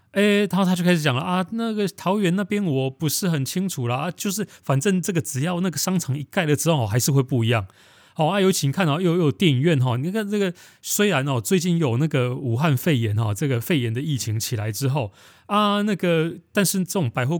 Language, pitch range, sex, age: Chinese, 120-160 Hz, male, 20-39